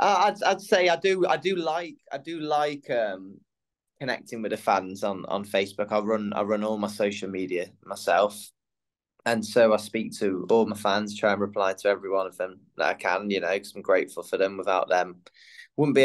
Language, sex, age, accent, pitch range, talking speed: English, male, 20-39, British, 95-130 Hz, 215 wpm